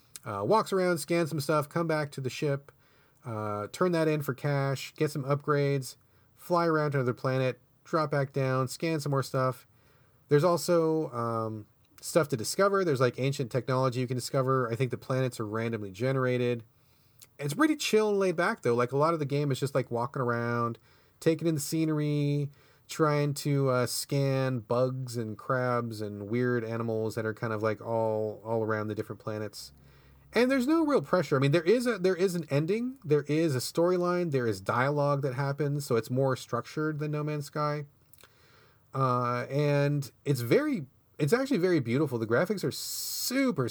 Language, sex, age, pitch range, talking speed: English, male, 30-49, 120-150 Hz, 190 wpm